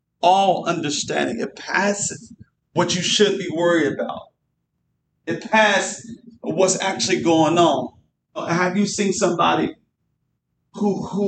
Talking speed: 115 wpm